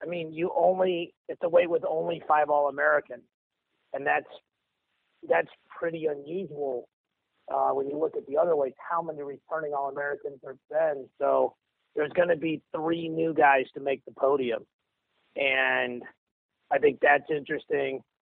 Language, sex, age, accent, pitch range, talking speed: English, male, 30-49, American, 130-170 Hz, 155 wpm